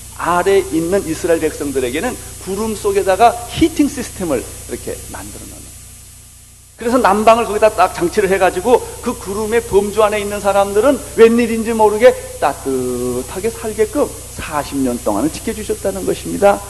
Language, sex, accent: Korean, male, native